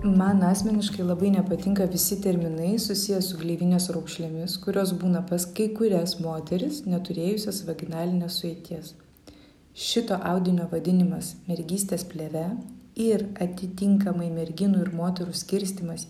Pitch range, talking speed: 175-210 Hz, 110 wpm